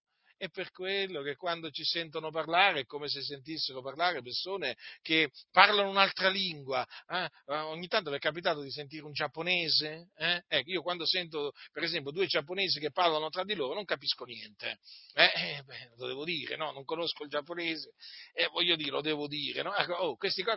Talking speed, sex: 195 wpm, male